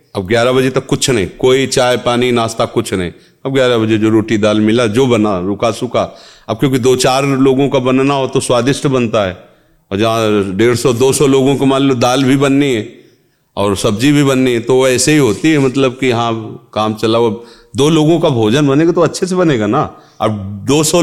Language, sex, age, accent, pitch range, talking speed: Hindi, male, 40-59, native, 115-145 Hz, 220 wpm